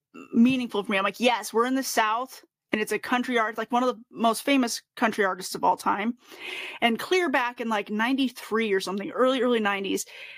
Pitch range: 210-270 Hz